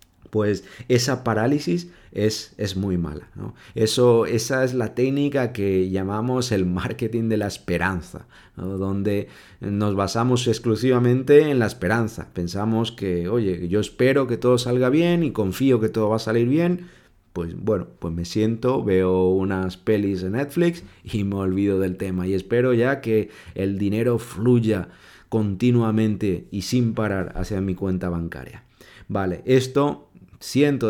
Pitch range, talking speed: 95-120 Hz, 150 wpm